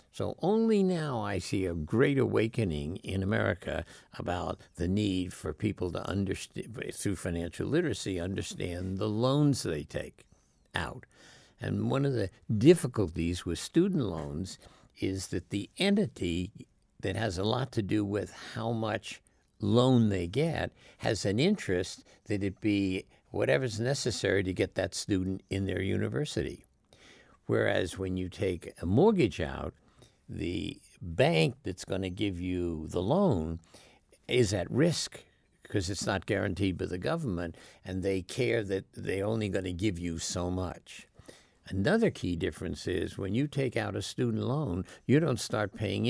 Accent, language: American, English